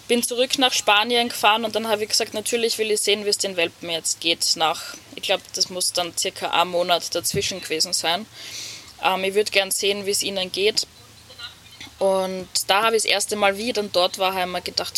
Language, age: German, 10-29